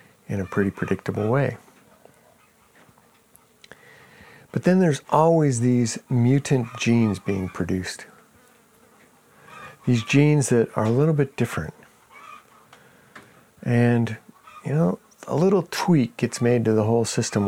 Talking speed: 115 wpm